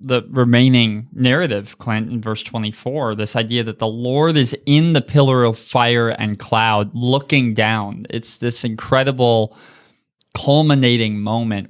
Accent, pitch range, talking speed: American, 120-150 Hz, 135 wpm